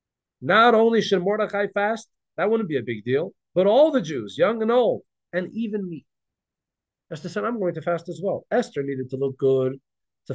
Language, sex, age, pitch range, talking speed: English, male, 50-69, 130-190 Hz, 205 wpm